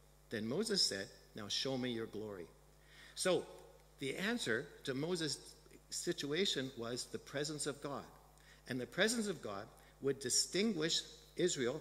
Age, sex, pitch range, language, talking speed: 60-79, male, 125-165 Hz, English, 135 wpm